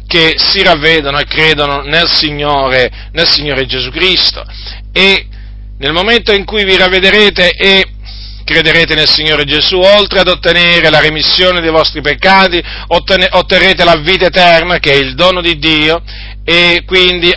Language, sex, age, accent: Italian, male, 40-59, native